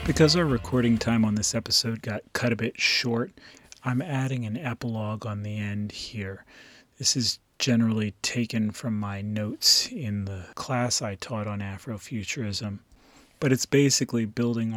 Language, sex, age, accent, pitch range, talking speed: English, male, 30-49, American, 110-130 Hz, 155 wpm